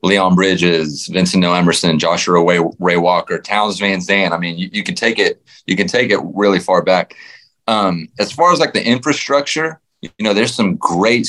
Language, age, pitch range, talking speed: English, 30-49, 90-115 Hz, 200 wpm